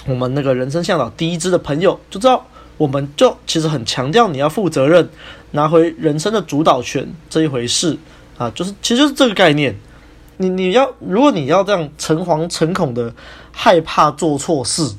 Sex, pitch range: male, 130-165 Hz